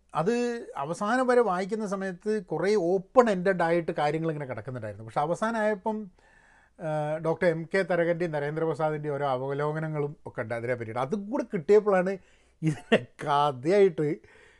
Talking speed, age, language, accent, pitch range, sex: 115 wpm, 30-49, Malayalam, native, 145-215 Hz, male